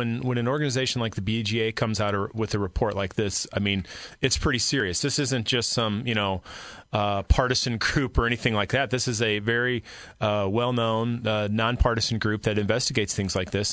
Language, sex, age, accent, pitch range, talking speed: English, male, 30-49, American, 105-125 Hz, 210 wpm